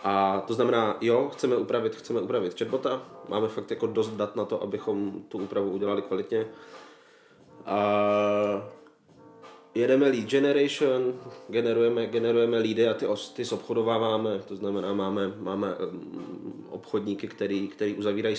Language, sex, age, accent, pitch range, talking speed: Czech, male, 20-39, native, 105-120 Hz, 130 wpm